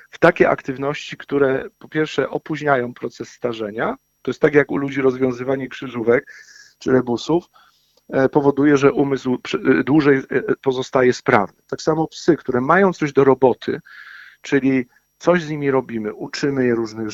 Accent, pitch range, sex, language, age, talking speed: native, 125-140 Hz, male, Polish, 50-69, 145 wpm